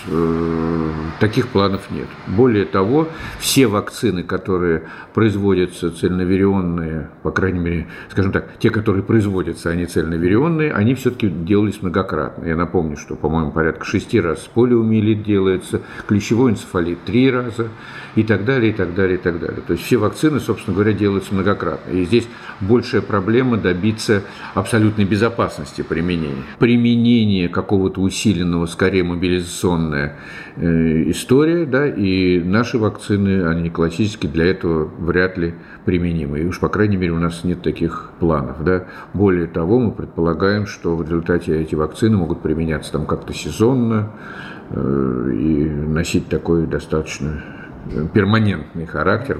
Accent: native